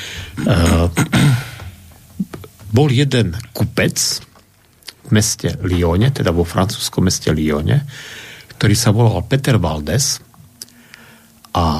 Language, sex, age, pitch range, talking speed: Slovak, male, 50-69, 95-130 Hz, 90 wpm